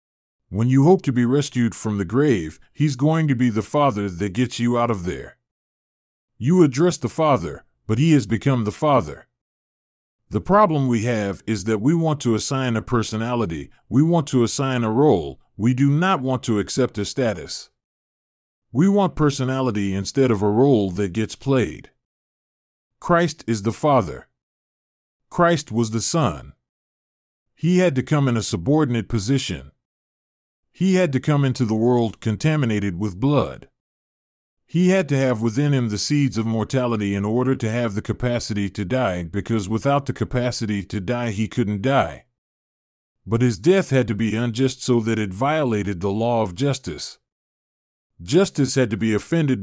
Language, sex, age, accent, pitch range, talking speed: English, male, 40-59, American, 105-140 Hz, 170 wpm